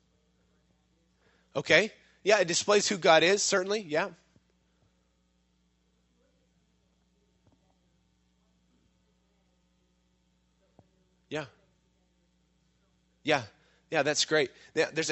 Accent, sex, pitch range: American, male, 115-165 Hz